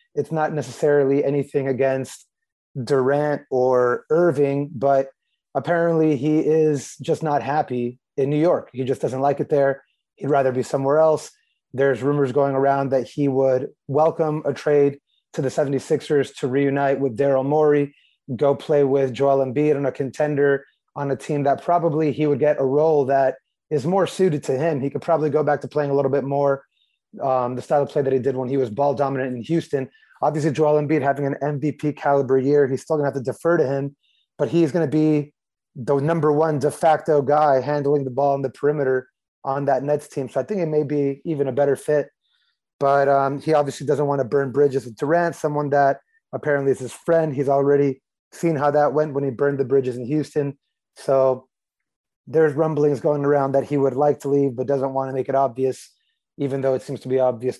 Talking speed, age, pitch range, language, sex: 210 wpm, 30-49, 135-150 Hz, English, male